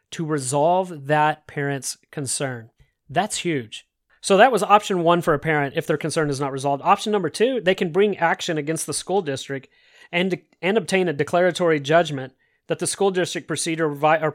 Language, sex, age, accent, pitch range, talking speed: English, male, 30-49, American, 145-175 Hz, 185 wpm